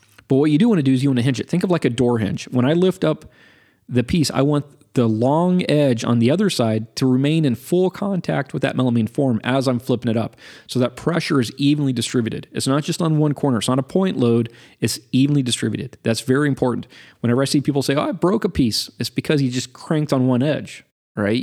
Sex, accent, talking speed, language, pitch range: male, American, 250 wpm, English, 115-140 Hz